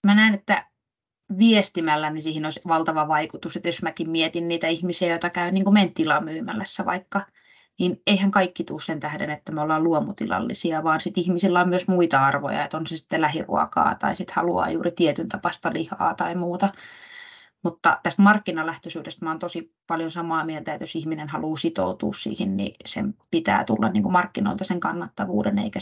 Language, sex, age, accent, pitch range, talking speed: Finnish, female, 20-39, native, 160-195 Hz, 180 wpm